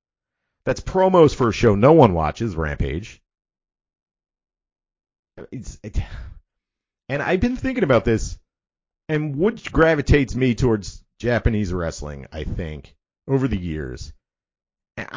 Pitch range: 95-145 Hz